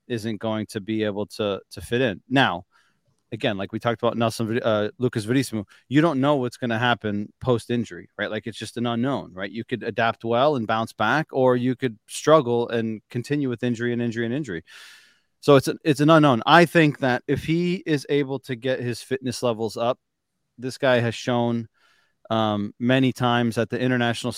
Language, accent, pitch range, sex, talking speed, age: English, American, 115-130 Hz, male, 205 wpm, 30-49